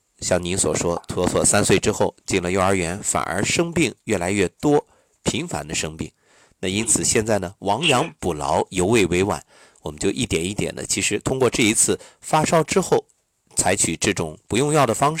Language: Chinese